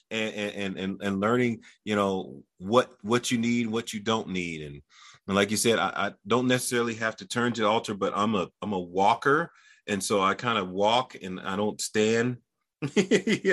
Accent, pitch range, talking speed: American, 95-120 Hz, 210 wpm